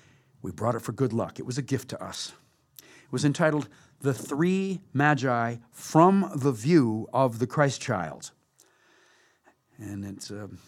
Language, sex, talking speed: English, male, 145 wpm